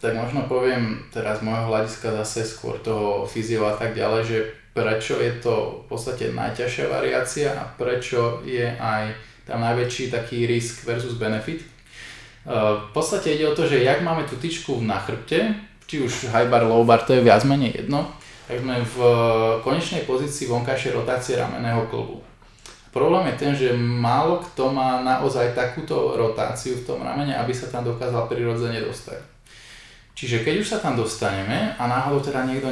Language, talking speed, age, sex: Slovak, 170 wpm, 20-39, male